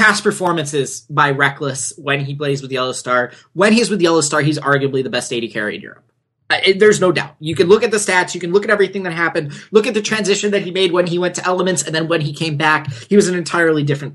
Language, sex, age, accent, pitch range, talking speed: English, male, 20-39, American, 140-180 Hz, 270 wpm